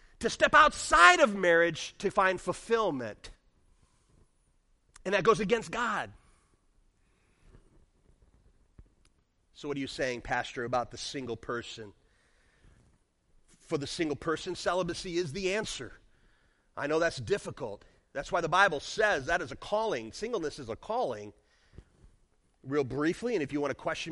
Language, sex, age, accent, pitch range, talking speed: English, male, 40-59, American, 120-190 Hz, 140 wpm